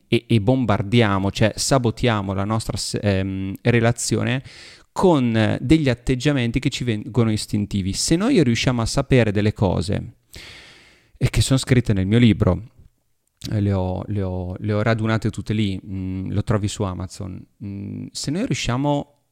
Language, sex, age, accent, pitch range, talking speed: Italian, male, 30-49, native, 105-130 Hz, 130 wpm